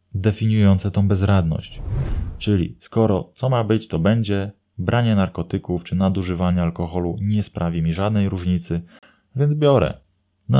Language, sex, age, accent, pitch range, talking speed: Polish, male, 20-39, native, 85-105 Hz, 130 wpm